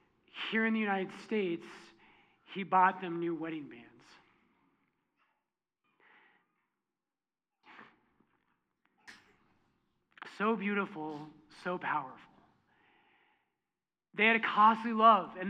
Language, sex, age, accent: English, male, 40-59, American